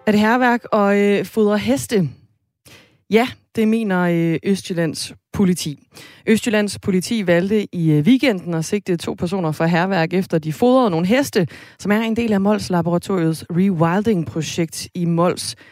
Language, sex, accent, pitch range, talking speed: Danish, female, native, 165-210 Hz, 155 wpm